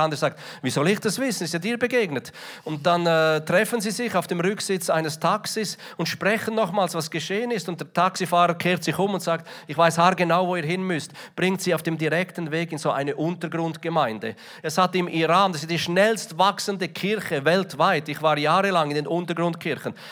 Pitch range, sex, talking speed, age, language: 160-195 Hz, male, 215 wpm, 40-59, German